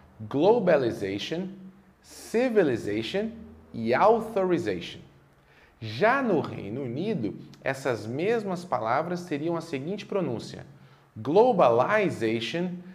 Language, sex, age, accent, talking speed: Portuguese, male, 40-59, Brazilian, 75 wpm